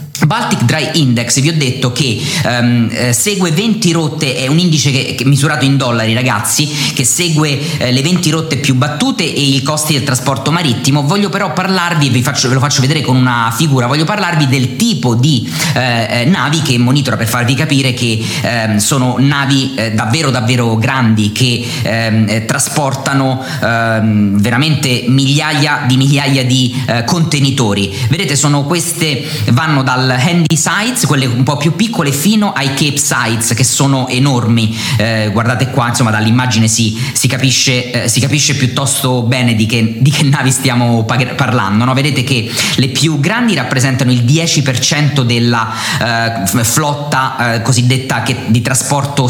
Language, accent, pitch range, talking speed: Italian, native, 120-150 Hz, 165 wpm